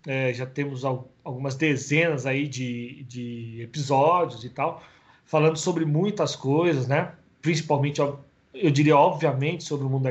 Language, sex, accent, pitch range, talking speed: Portuguese, male, Brazilian, 135-165 Hz, 150 wpm